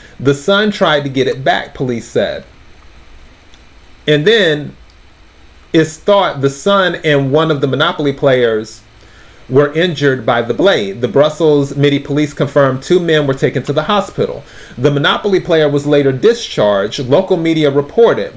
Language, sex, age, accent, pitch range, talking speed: English, male, 40-59, American, 130-160 Hz, 155 wpm